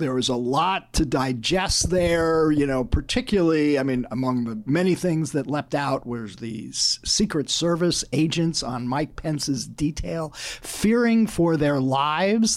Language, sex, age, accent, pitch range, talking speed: English, male, 50-69, American, 135-185 Hz, 155 wpm